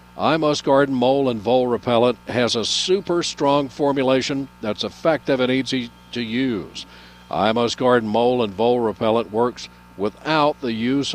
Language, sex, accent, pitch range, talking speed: English, male, American, 100-135 Hz, 155 wpm